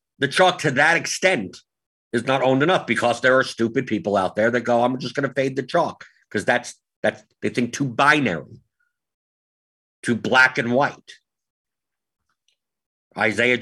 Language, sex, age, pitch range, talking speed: English, male, 50-69, 110-145 Hz, 165 wpm